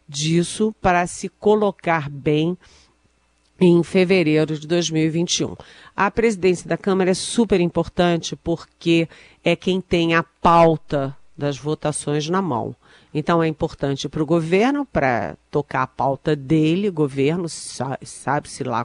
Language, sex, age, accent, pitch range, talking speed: Portuguese, female, 40-59, Brazilian, 155-195 Hz, 125 wpm